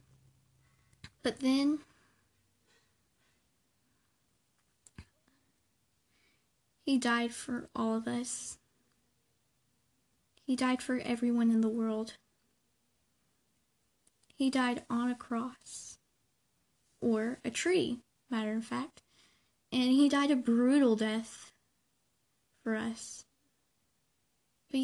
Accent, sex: American, female